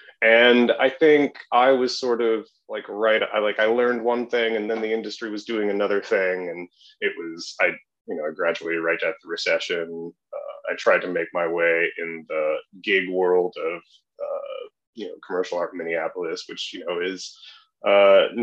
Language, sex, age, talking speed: English, male, 30-49, 190 wpm